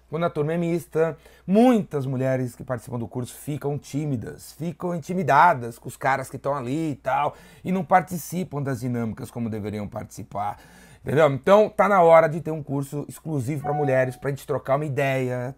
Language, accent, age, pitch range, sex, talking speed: Portuguese, Brazilian, 30-49, 130-165 Hz, male, 190 wpm